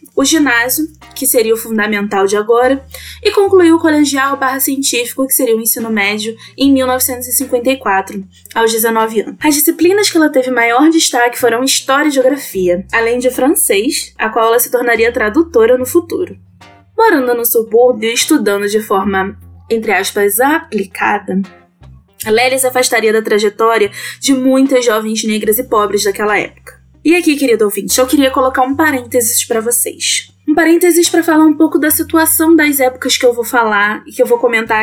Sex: female